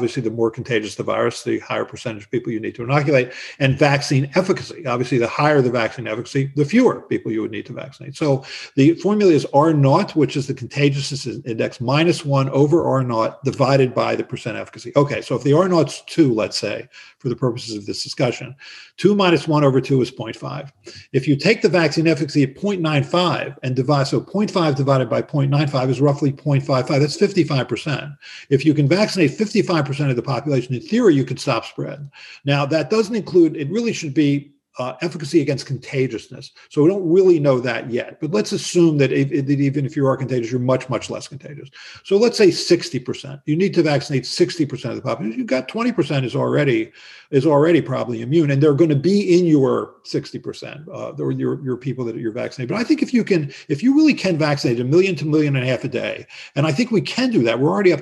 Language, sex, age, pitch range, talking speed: English, male, 50-69, 130-165 Hz, 220 wpm